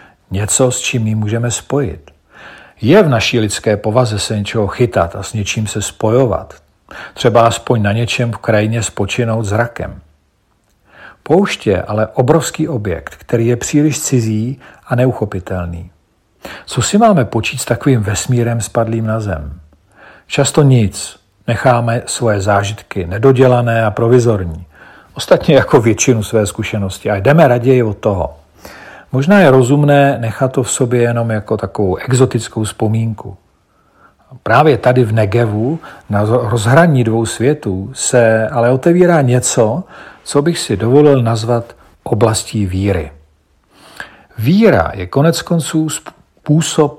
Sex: male